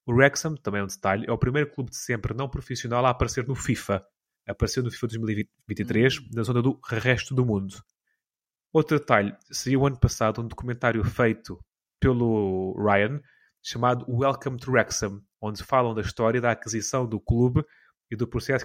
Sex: male